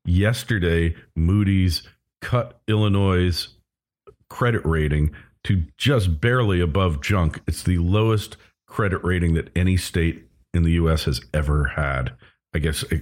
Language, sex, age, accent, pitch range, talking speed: English, male, 50-69, American, 80-100 Hz, 125 wpm